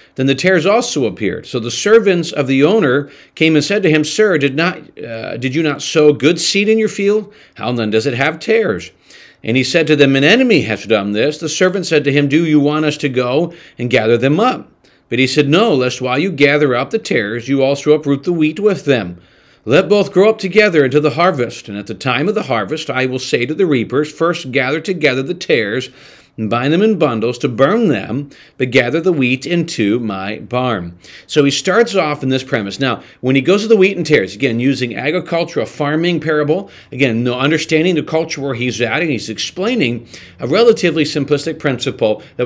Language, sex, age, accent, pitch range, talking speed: English, male, 50-69, American, 125-165 Hz, 220 wpm